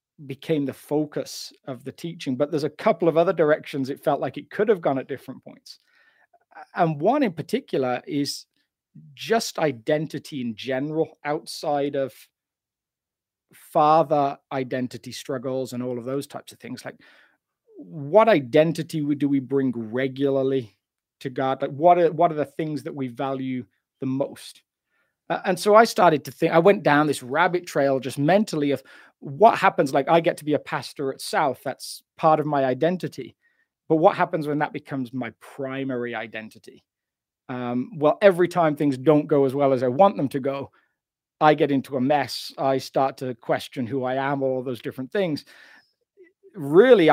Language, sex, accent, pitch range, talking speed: English, male, British, 135-165 Hz, 175 wpm